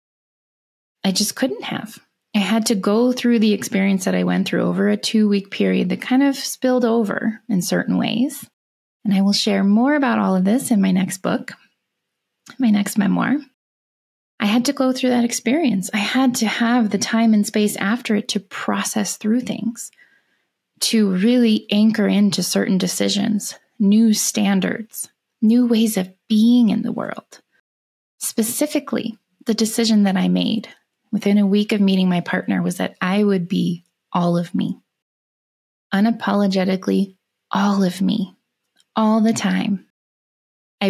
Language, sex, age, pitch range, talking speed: English, female, 20-39, 195-230 Hz, 160 wpm